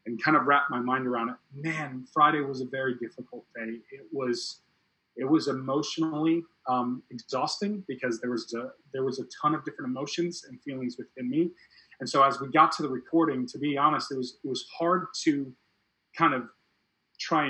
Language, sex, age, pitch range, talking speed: English, male, 30-49, 125-150 Hz, 195 wpm